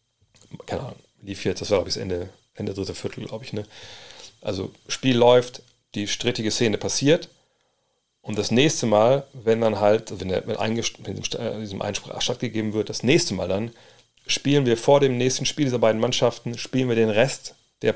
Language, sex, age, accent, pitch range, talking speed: German, male, 40-59, German, 105-130 Hz, 180 wpm